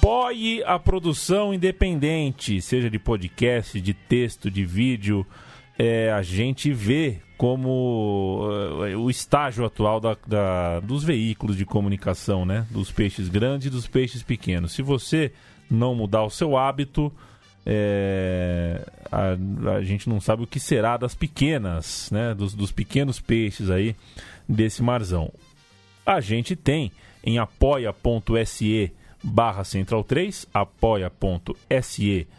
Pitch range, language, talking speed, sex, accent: 100-130 Hz, Portuguese, 120 wpm, male, Brazilian